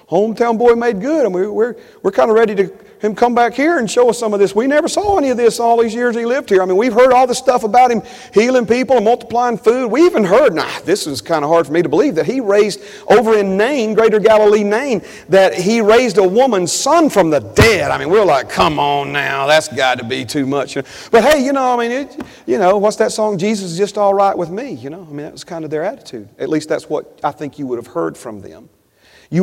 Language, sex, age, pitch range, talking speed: English, male, 40-59, 140-225 Hz, 275 wpm